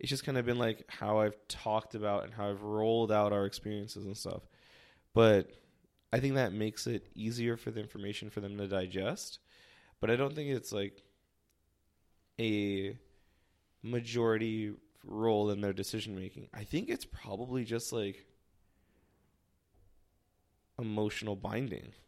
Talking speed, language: 145 wpm, English